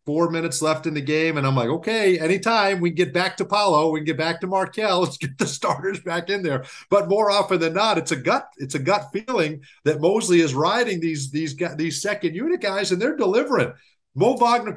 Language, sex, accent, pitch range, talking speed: English, male, American, 140-190 Hz, 230 wpm